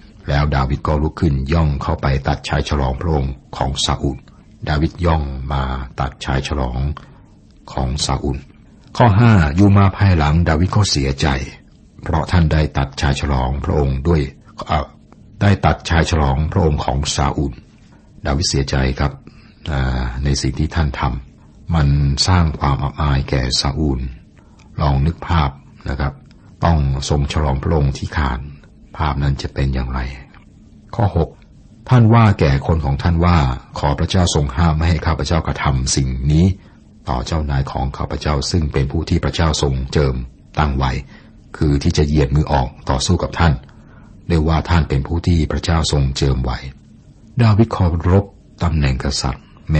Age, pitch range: 60-79, 70-85 Hz